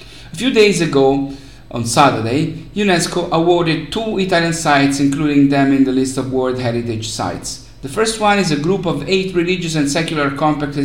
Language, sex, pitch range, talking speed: English, male, 130-170 Hz, 170 wpm